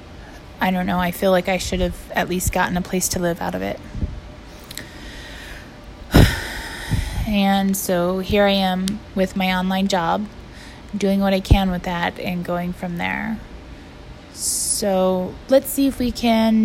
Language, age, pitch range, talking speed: English, 20-39, 185-220 Hz, 160 wpm